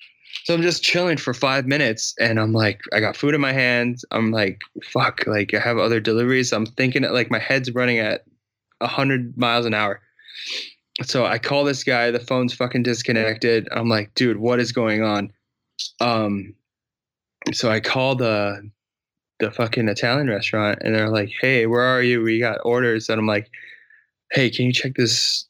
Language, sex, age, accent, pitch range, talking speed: English, male, 20-39, American, 105-125 Hz, 185 wpm